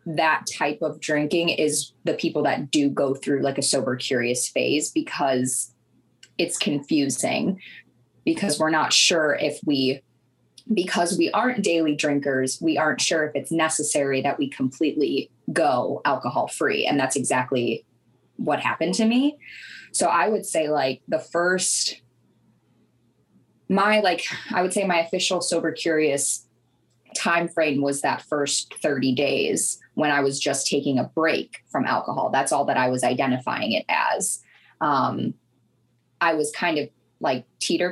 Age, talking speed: 20-39, 150 wpm